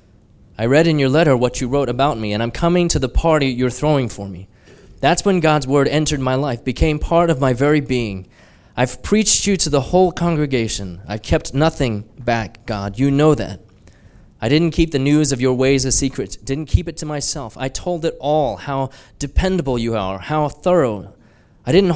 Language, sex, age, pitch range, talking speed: English, male, 20-39, 110-145 Hz, 205 wpm